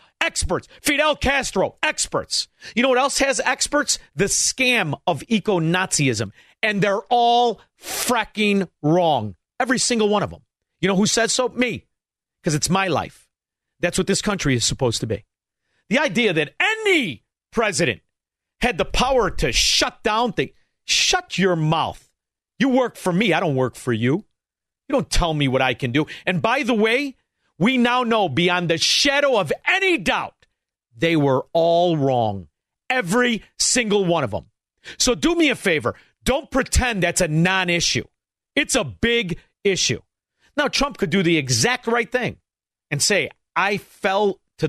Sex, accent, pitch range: male, American, 145-245 Hz